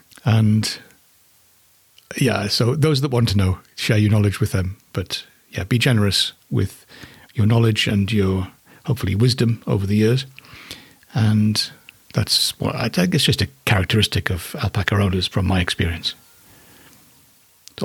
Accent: British